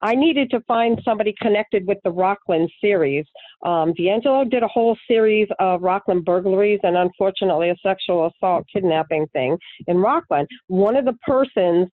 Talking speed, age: 160 wpm, 50-69